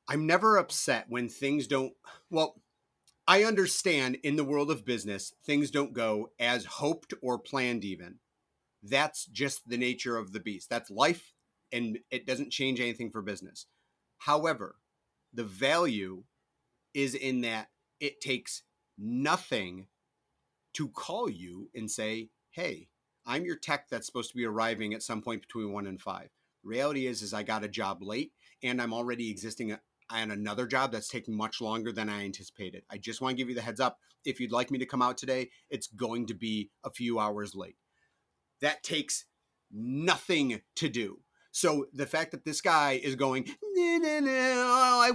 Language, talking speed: English, 175 wpm